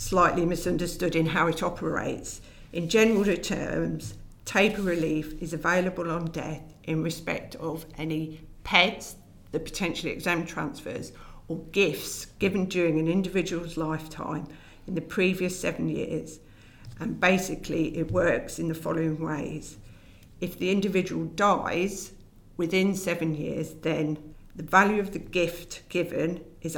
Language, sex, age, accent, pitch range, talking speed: English, female, 50-69, British, 155-175 Hz, 130 wpm